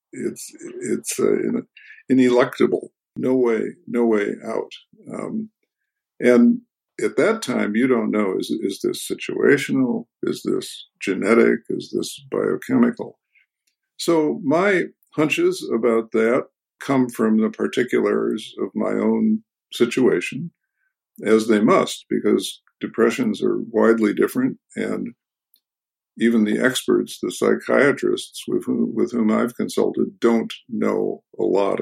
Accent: American